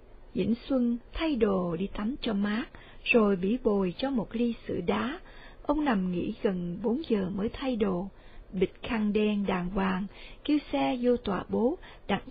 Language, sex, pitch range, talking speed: Vietnamese, female, 200-250 Hz, 175 wpm